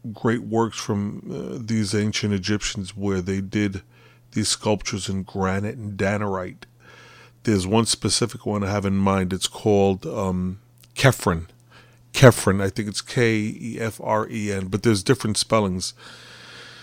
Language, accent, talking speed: English, American, 130 wpm